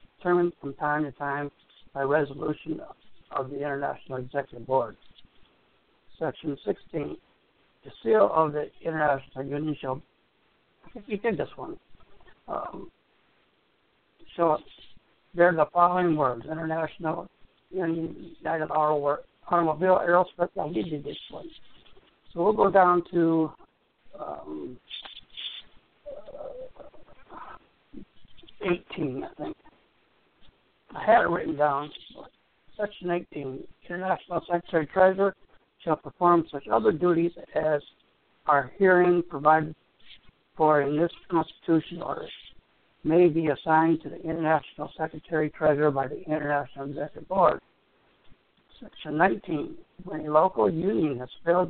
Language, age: English, 60-79